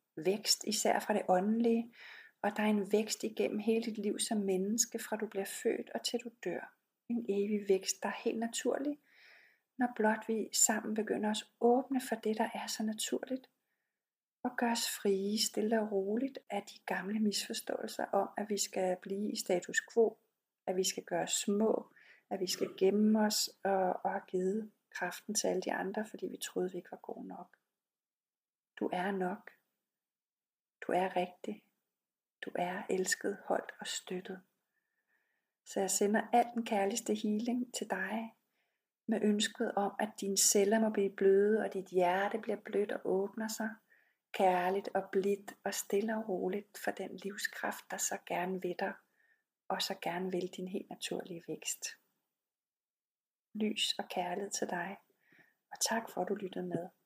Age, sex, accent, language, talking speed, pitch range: 40-59, female, native, Danish, 170 wpm, 195-230 Hz